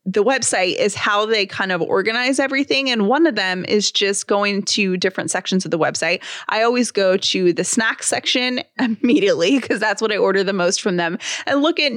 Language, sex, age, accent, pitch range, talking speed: English, female, 20-39, American, 190-255 Hz, 210 wpm